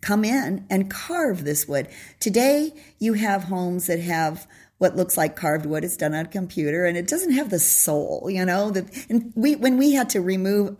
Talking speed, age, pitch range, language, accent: 210 wpm, 50-69, 170-230 Hz, English, American